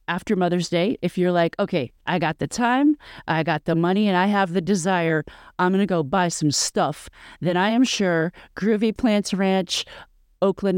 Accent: American